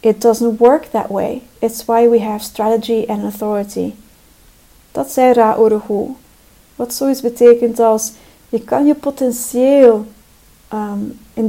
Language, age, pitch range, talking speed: Dutch, 40-59, 215-250 Hz, 130 wpm